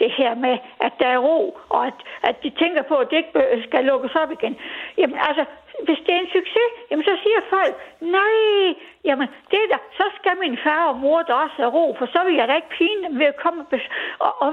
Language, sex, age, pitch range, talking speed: Danish, female, 60-79, 290-380 Hz, 240 wpm